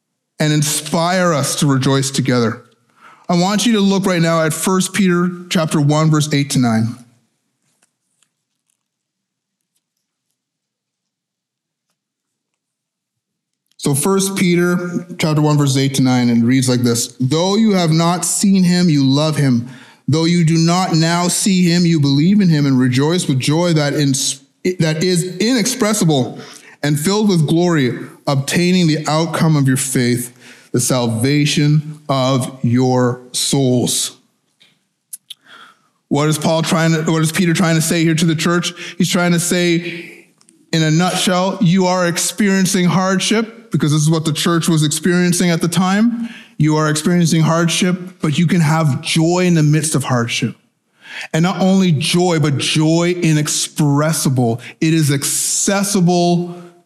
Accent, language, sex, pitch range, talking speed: American, English, male, 145-180 Hz, 150 wpm